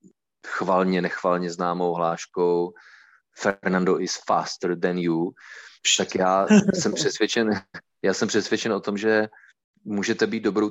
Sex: male